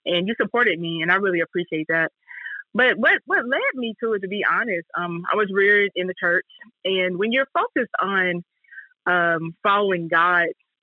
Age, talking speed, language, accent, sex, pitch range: 20-39, 190 wpm, English, American, female, 170-205 Hz